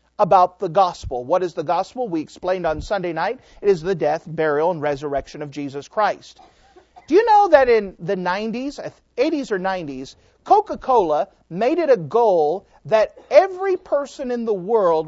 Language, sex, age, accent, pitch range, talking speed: English, male, 40-59, American, 180-295 Hz, 170 wpm